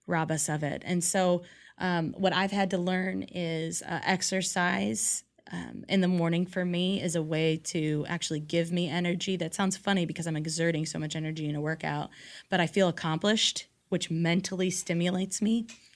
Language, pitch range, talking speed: English, 160-185 Hz, 185 wpm